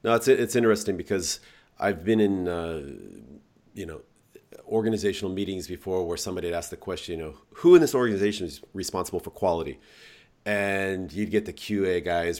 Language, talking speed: English, 175 wpm